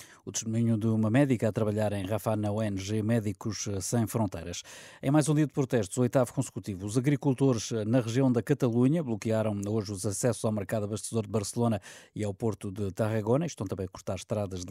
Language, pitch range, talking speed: Portuguese, 105-125 Hz, 200 wpm